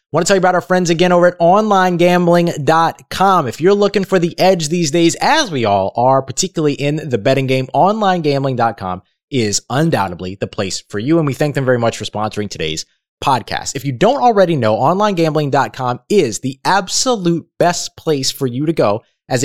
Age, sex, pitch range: 20-39, male, 105-170 Hz